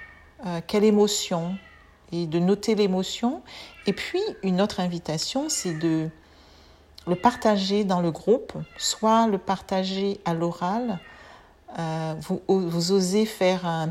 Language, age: French, 40-59